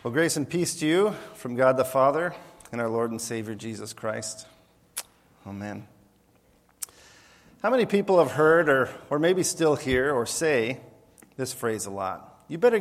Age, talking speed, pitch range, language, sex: 40-59, 170 wpm, 115-150 Hz, English, male